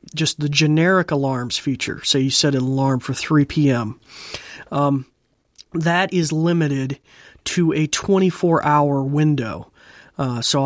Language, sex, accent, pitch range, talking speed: English, male, American, 140-180 Hz, 125 wpm